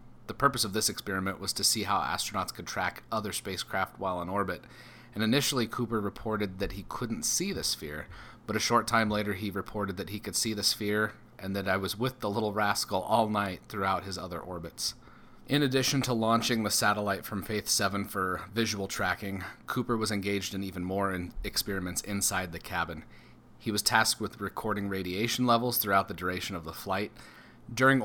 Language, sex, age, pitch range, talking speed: English, male, 30-49, 95-115 Hz, 195 wpm